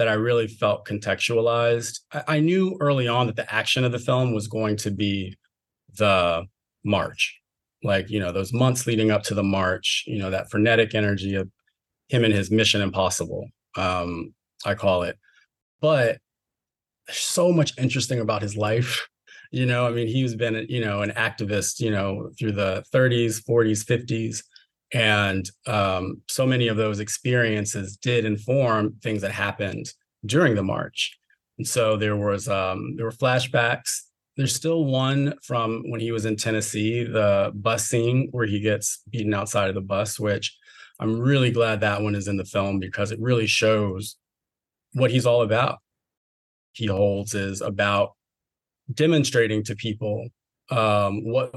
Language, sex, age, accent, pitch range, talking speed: English, male, 30-49, American, 100-120 Hz, 165 wpm